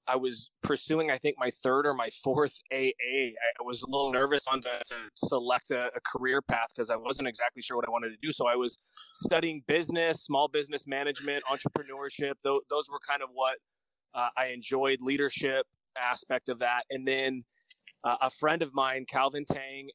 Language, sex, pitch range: English, male, 125-145 Hz